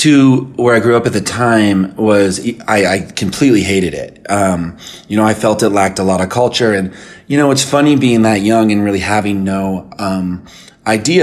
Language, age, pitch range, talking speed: English, 30-49, 95-125 Hz, 210 wpm